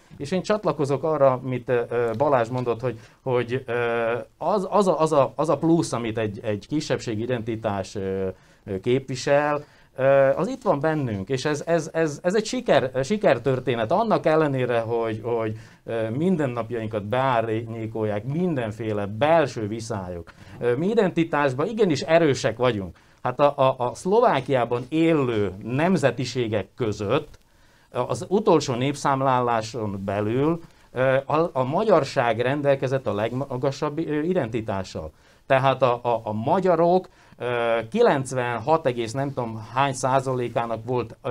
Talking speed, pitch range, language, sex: 110 wpm, 115-150 Hz, Hungarian, male